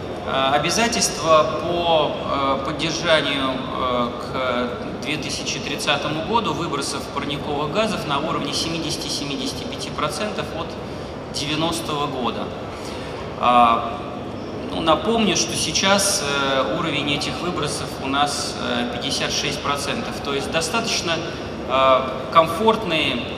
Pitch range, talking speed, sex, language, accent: 120-170 Hz, 70 wpm, male, Russian, native